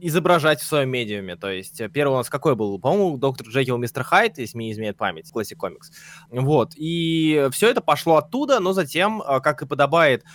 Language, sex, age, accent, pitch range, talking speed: Russian, male, 20-39, native, 125-170 Hz, 195 wpm